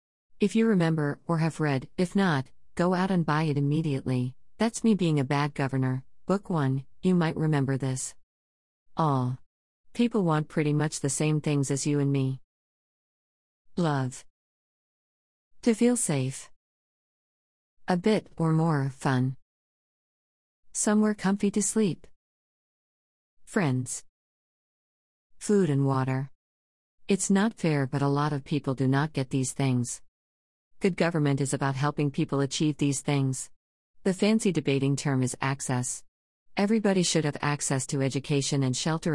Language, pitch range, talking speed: English, 130-160 Hz, 140 wpm